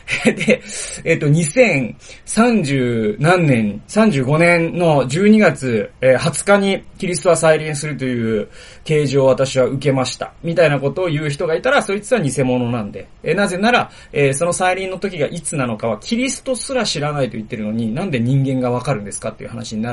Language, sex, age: Japanese, male, 30-49